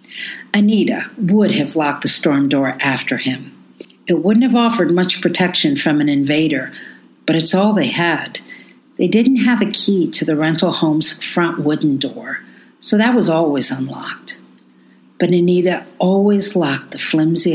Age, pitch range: 60-79, 145-215 Hz